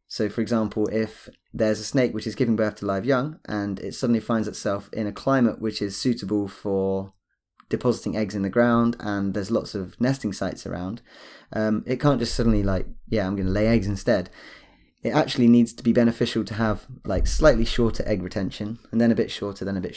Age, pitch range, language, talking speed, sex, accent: 20-39, 100-120 Hz, English, 215 wpm, male, British